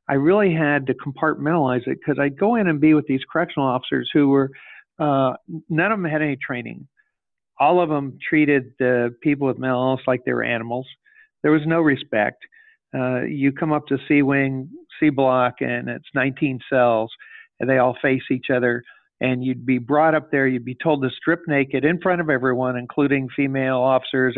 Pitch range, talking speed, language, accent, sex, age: 130-165 Hz, 190 wpm, English, American, male, 50-69